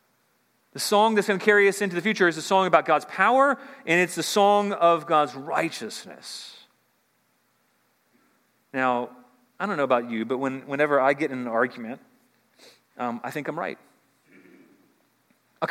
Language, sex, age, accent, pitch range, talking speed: English, male, 40-59, American, 135-205 Hz, 160 wpm